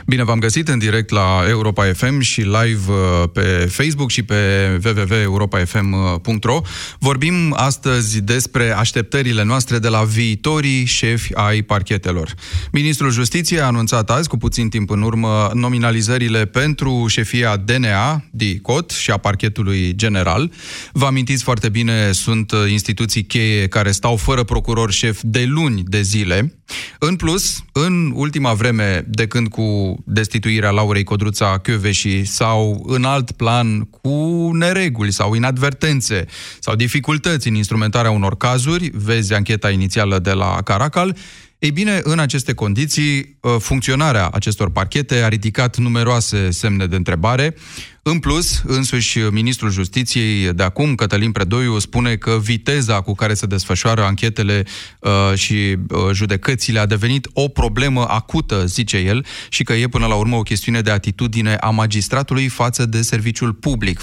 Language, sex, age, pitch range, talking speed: Romanian, male, 30-49, 105-130 Hz, 140 wpm